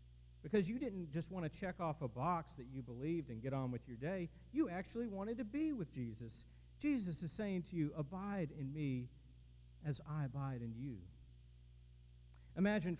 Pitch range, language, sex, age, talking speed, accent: 115-165 Hz, English, male, 50-69, 185 wpm, American